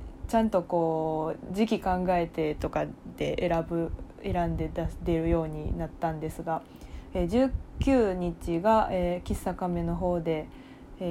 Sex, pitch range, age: female, 165-190 Hz, 20-39